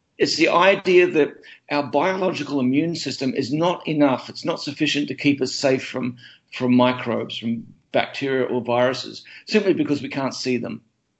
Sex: male